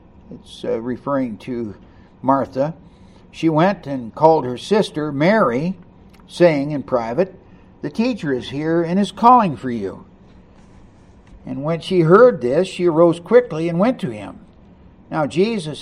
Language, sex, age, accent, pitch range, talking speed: English, male, 60-79, American, 135-190 Hz, 145 wpm